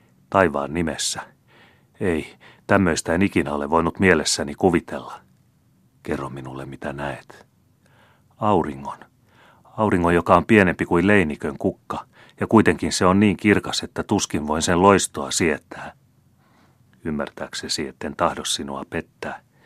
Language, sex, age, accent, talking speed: Finnish, male, 40-59, native, 120 wpm